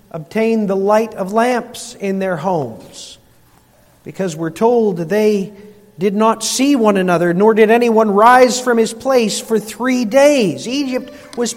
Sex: male